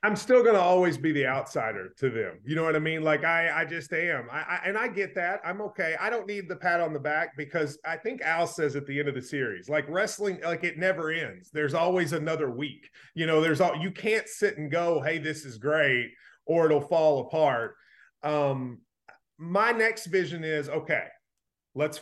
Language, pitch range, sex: English, 150-180 Hz, male